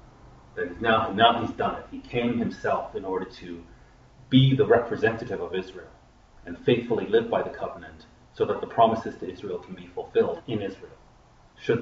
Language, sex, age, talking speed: English, male, 30-49, 180 wpm